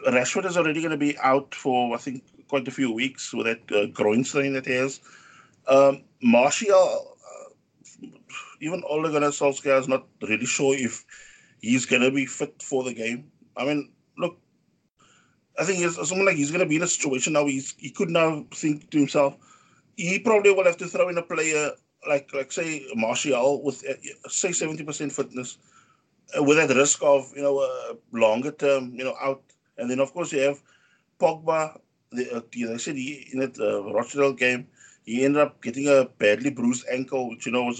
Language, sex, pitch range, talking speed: English, male, 125-150 Hz, 190 wpm